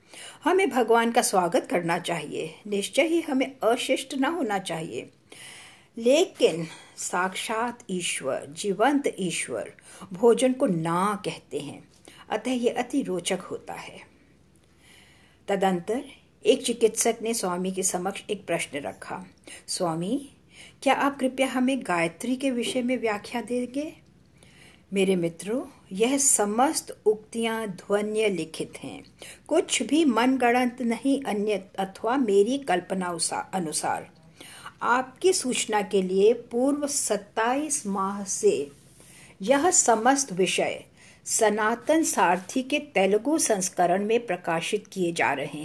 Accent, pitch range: Indian, 190-265 Hz